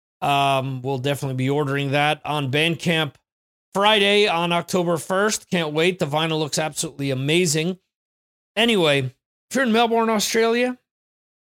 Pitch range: 155-215 Hz